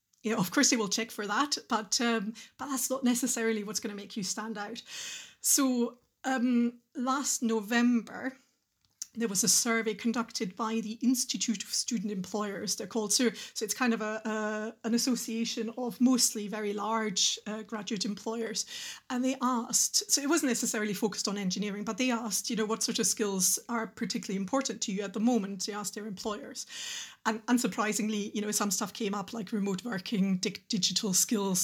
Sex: female